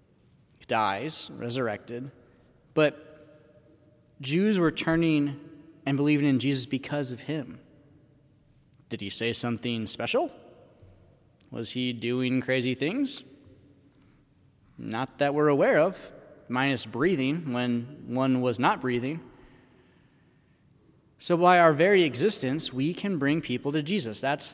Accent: American